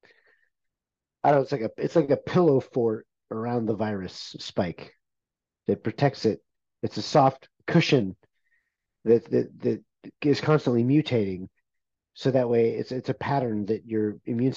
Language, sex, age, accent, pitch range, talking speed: English, male, 40-59, American, 110-140 Hz, 150 wpm